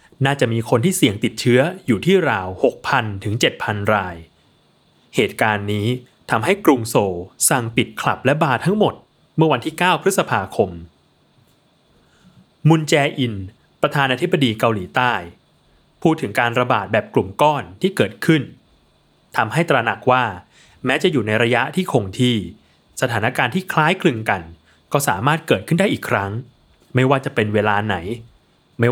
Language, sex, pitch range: Thai, male, 105-150 Hz